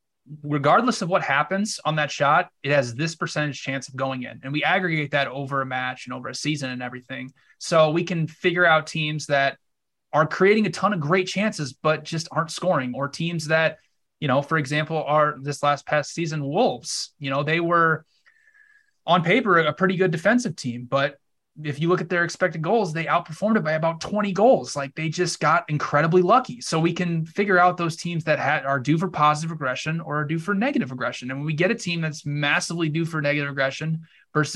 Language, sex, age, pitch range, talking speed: English, male, 20-39, 140-170 Hz, 215 wpm